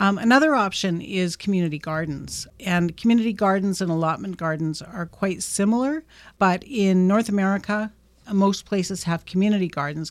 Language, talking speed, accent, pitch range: English, 140 wpm, American, 160-195 Hz